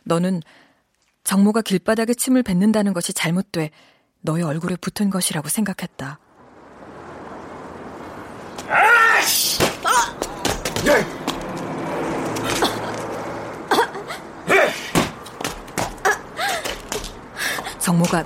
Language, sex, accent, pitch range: Korean, female, native, 165-200 Hz